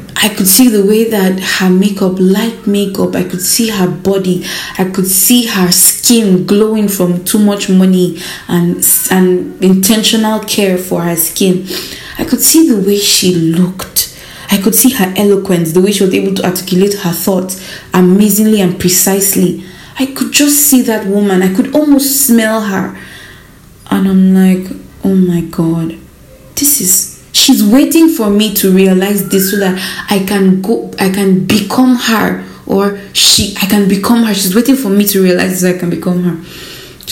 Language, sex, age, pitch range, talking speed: English, female, 20-39, 180-210 Hz, 175 wpm